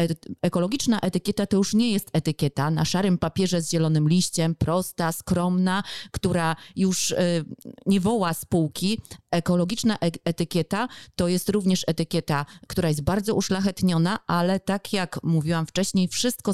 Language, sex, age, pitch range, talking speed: Polish, female, 30-49, 160-195 Hz, 130 wpm